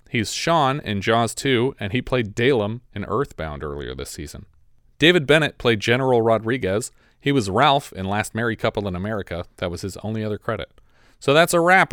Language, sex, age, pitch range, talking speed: English, male, 30-49, 105-145 Hz, 190 wpm